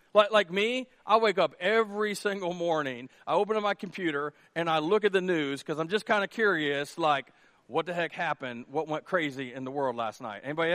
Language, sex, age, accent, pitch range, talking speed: English, male, 40-59, American, 155-205 Hz, 225 wpm